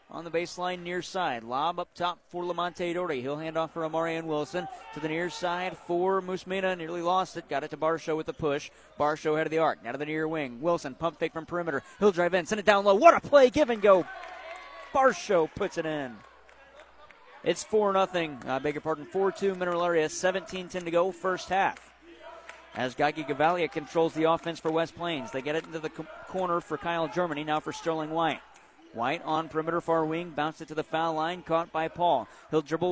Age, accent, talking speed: 40-59, American, 215 wpm